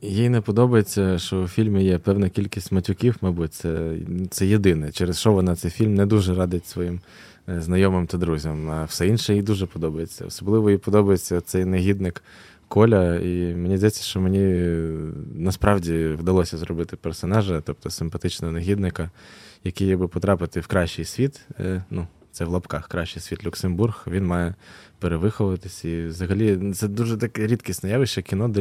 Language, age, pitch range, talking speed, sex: Ukrainian, 20-39, 85-105 Hz, 155 wpm, male